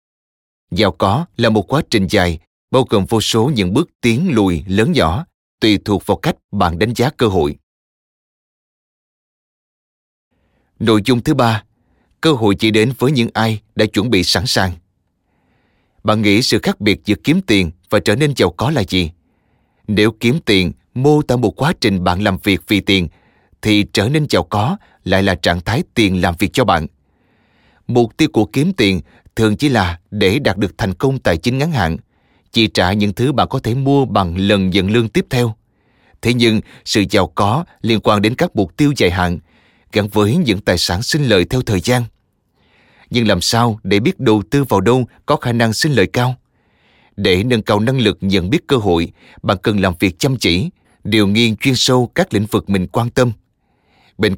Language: Vietnamese